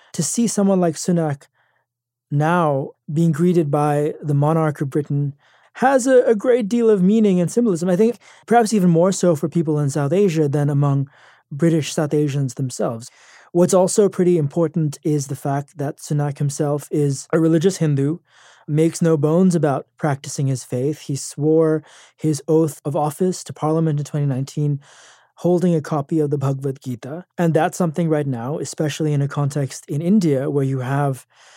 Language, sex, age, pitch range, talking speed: English, male, 20-39, 145-175 Hz, 175 wpm